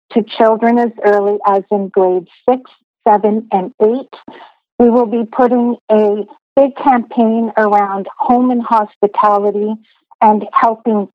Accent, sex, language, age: American, female, English, 50-69